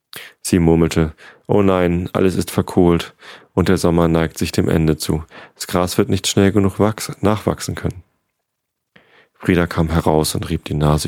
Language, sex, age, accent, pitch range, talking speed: German, male, 40-59, German, 80-95 Hz, 170 wpm